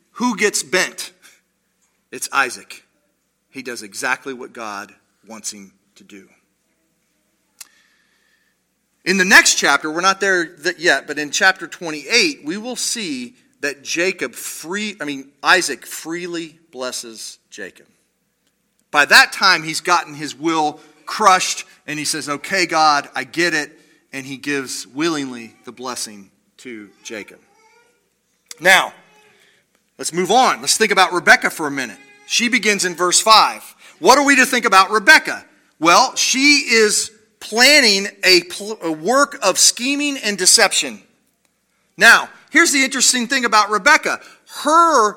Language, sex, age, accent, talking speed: English, male, 40-59, American, 140 wpm